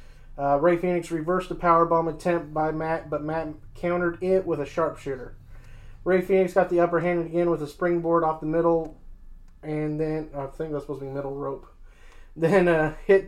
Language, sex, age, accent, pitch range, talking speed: English, male, 20-39, American, 150-180 Hz, 190 wpm